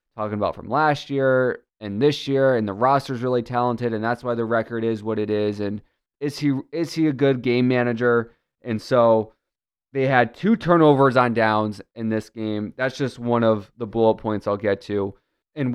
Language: English